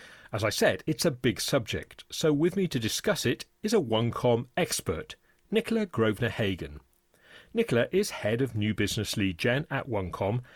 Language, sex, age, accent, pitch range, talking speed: English, male, 40-59, British, 105-150 Hz, 170 wpm